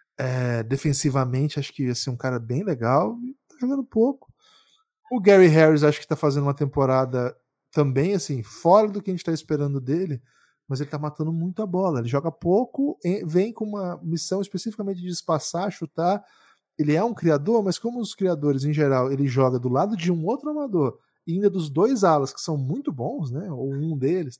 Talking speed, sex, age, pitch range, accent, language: 205 wpm, male, 20-39, 140-195 Hz, Brazilian, Portuguese